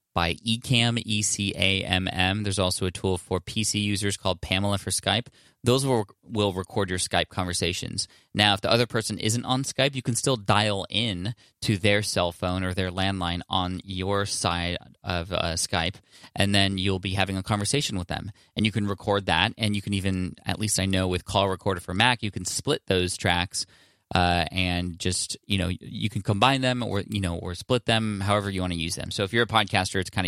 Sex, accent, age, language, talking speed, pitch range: male, American, 20-39, English, 210 wpm, 95-110 Hz